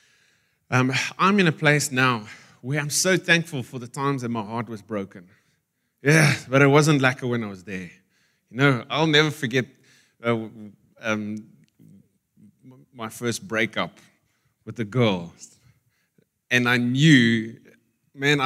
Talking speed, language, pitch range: 145 wpm, English, 110-145 Hz